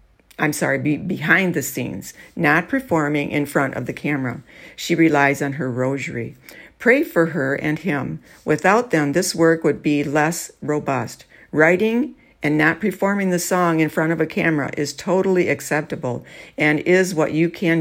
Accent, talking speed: American, 170 wpm